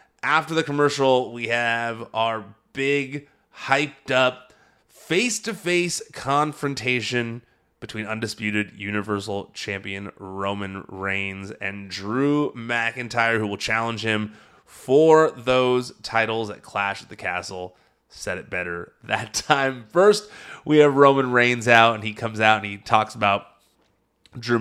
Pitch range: 100-130 Hz